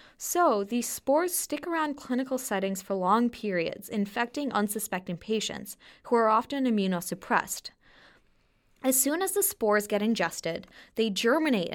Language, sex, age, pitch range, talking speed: English, female, 20-39, 195-255 Hz, 135 wpm